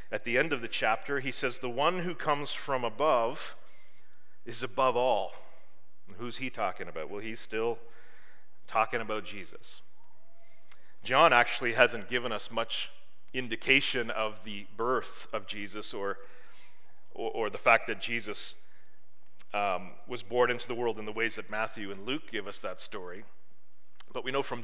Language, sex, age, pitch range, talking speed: English, male, 40-59, 115-145 Hz, 165 wpm